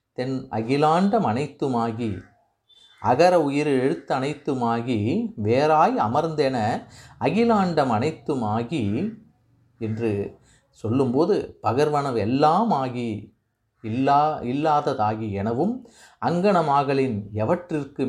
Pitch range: 110-165 Hz